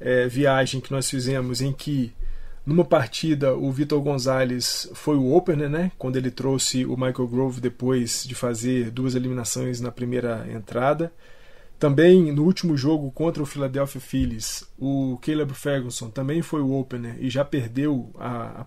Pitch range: 125-145 Hz